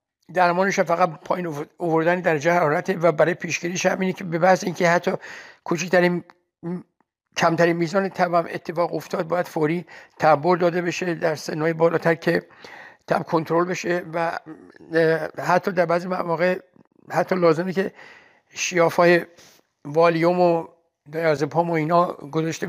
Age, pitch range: 60-79, 160-180 Hz